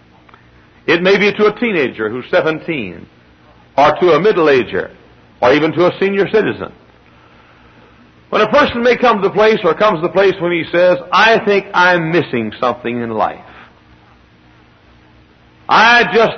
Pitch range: 165-210 Hz